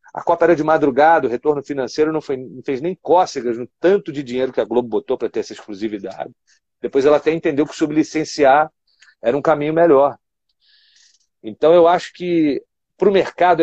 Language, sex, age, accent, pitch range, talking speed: Portuguese, male, 40-59, Brazilian, 125-165 Hz, 190 wpm